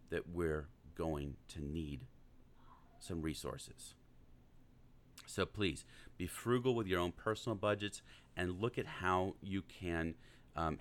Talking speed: 130 wpm